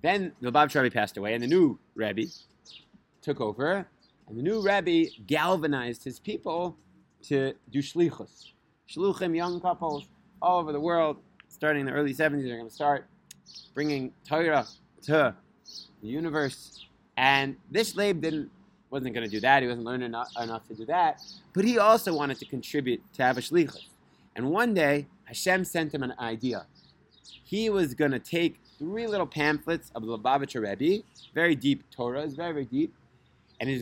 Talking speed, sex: 170 wpm, male